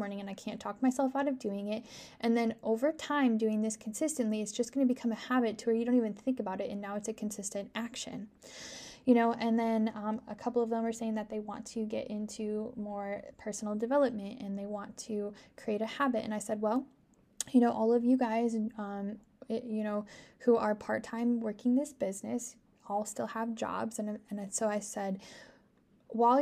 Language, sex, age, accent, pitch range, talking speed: English, female, 10-29, American, 210-245 Hz, 215 wpm